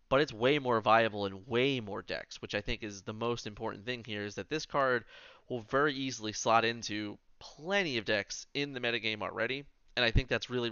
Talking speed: 220 wpm